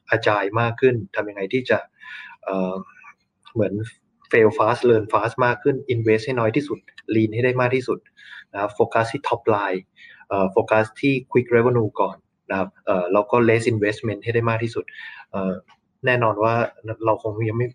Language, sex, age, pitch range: Thai, male, 20-39, 110-125 Hz